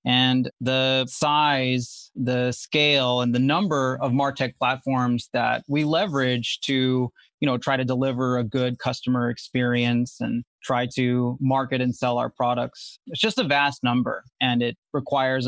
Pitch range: 125-145 Hz